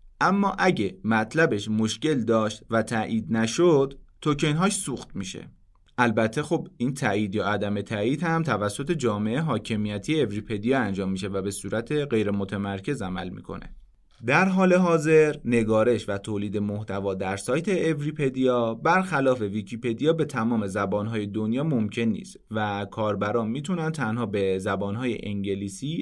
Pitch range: 105-155 Hz